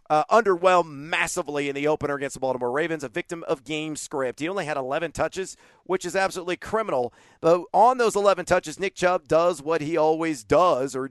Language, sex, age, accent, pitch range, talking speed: English, male, 40-59, American, 150-185 Hz, 200 wpm